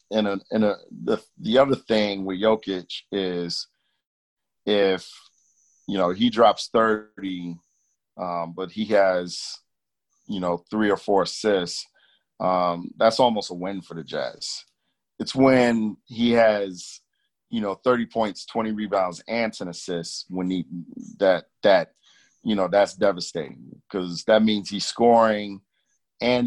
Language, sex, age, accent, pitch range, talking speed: English, male, 40-59, American, 90-105 Hz, 135 wpm